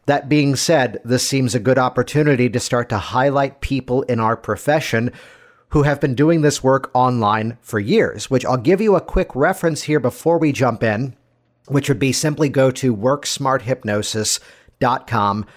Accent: American